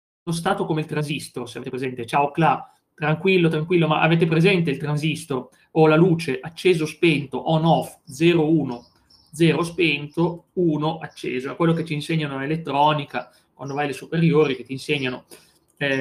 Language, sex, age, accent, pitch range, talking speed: Italian, male, 30-49, native, 140-175 Hz, 165 wpm